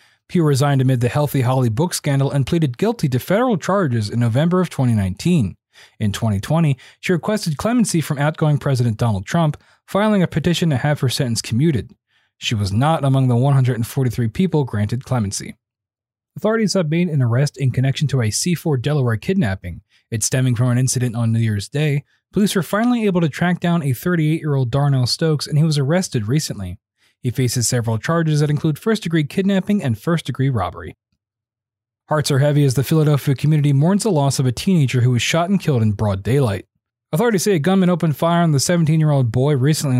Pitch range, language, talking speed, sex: 120-160 Hz, English, 190 wpm, male